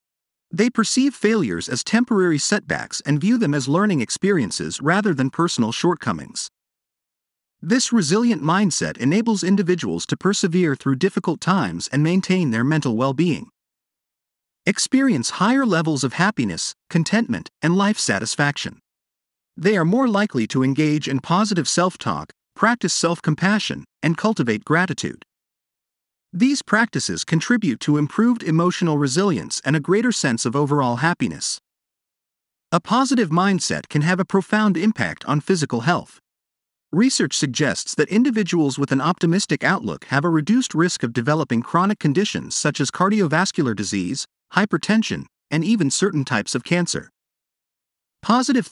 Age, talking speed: 40-59, 130 wpm